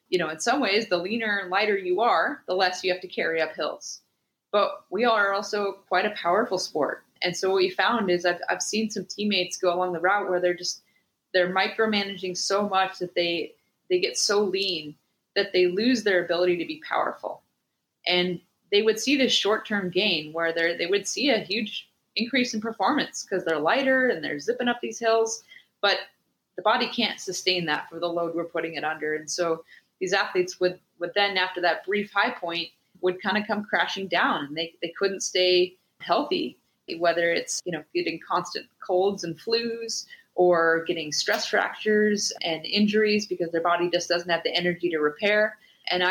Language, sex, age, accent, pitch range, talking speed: English, female, 20-39, American, 175-210 Hz, 195 wpm